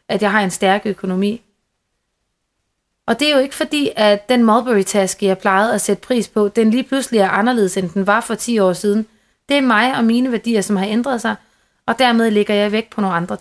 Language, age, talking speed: Danish, 30-49, 235 wpm